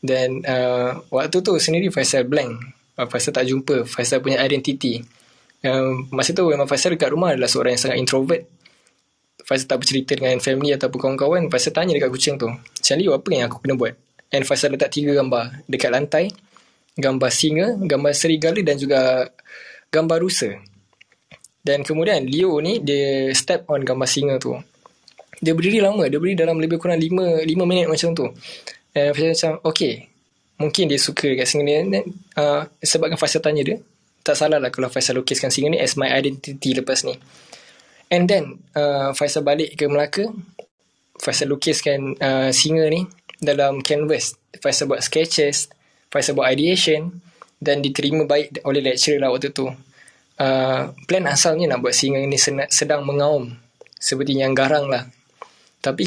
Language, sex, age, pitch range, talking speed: Malay, male, 20-39, 135-160 Hz, 155 wpm